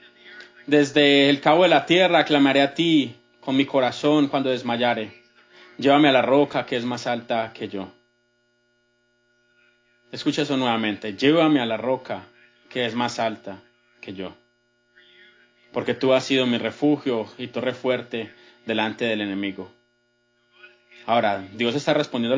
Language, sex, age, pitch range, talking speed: English, male, 30-49, 115-130 Hz, 140 wpm